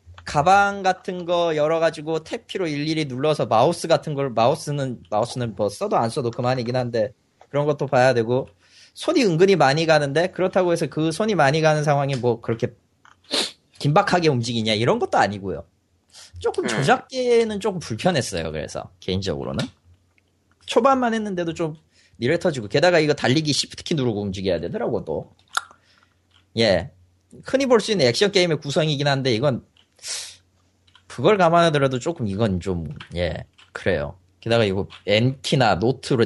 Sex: male